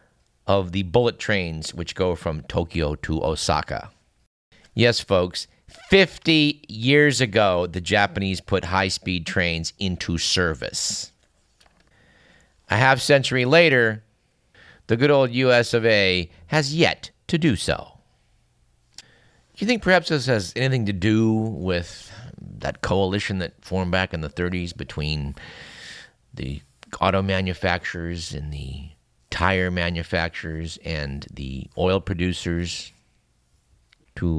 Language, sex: English, male